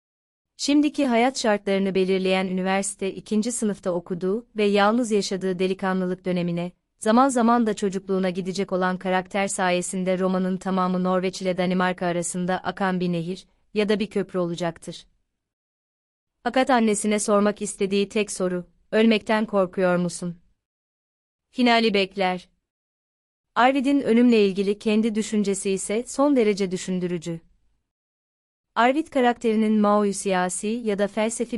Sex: female